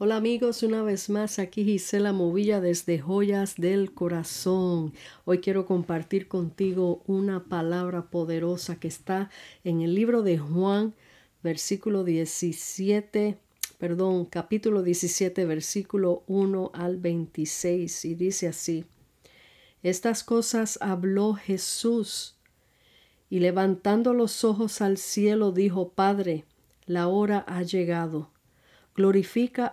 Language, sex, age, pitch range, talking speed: Spanish, female, 50-69, 170-200 Hz, 110 wpm